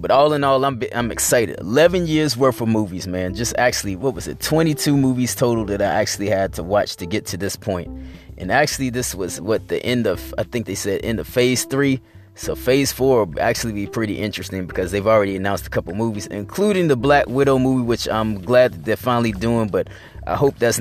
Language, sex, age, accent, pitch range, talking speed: English, male, 30-49, American, 95-125 Hz, 230 wpm